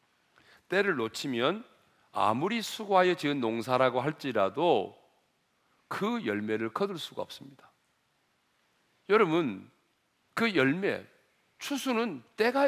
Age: 40-59